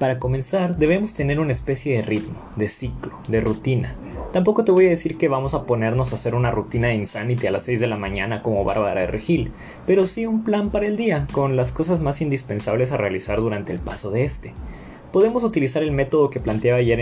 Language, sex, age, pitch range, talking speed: Spanish, male, 20-39, 115-160 Hz, 220 wpm